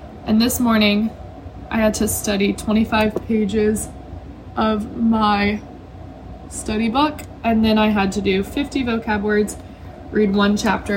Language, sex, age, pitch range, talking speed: English, female, 20-39, 195-240 Hz, 135 wpm